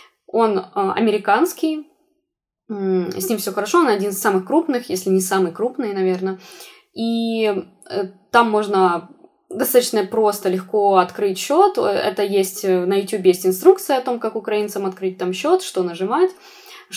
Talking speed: 140 wpm